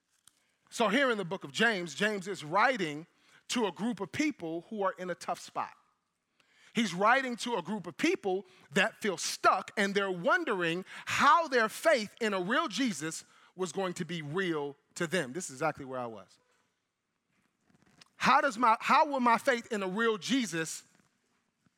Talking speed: 180 wpm